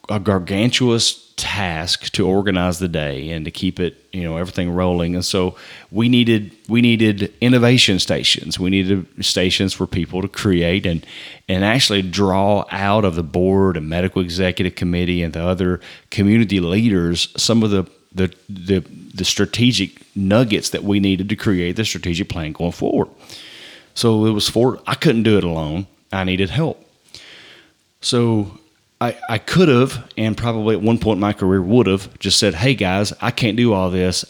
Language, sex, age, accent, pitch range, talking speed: English, male, 30-49, American, 90-110 Hz, 175 wpm